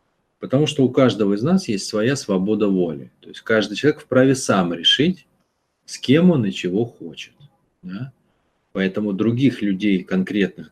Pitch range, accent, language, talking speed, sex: 90-120 Hz, native, Russian, 155 wpm, male